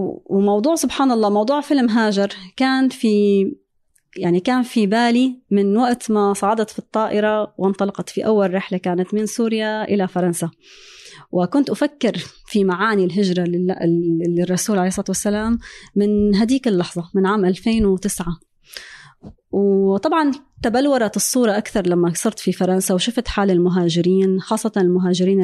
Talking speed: 130 wpm